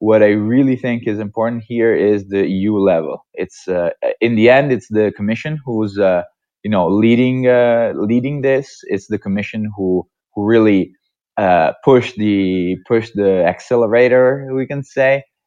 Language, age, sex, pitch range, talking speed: English, 20-39, male, 100-125 Hz, 165 wpm